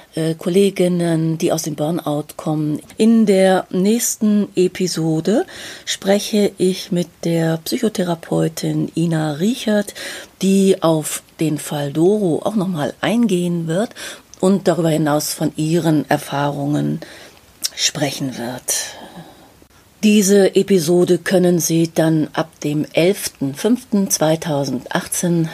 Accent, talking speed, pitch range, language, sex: German, 100 wpm, 150-195 Hz, German, female